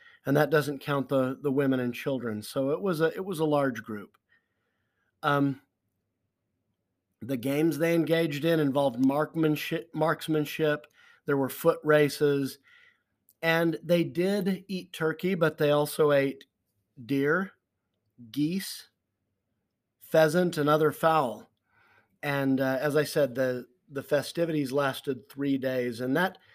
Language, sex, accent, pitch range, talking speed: English, male, American, 130-155 Hz, 135 wpm